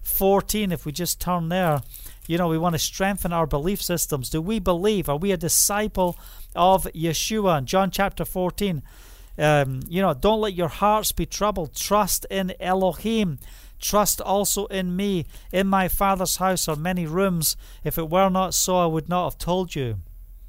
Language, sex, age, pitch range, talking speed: English, male, 40-59, 145-195 Hz, 180 wpm